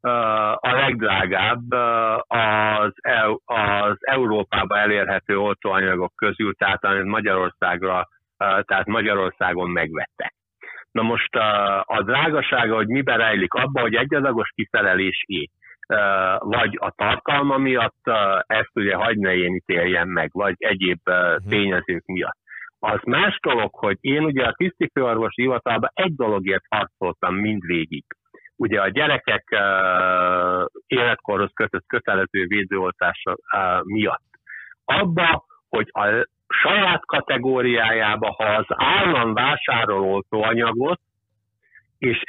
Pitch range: 95-120 Hz